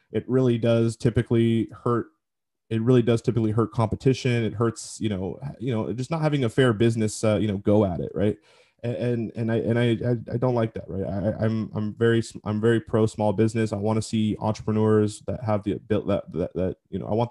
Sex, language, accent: male, English, American